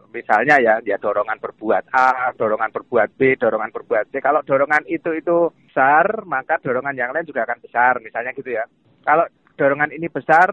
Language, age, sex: Indonesian, 30-49, male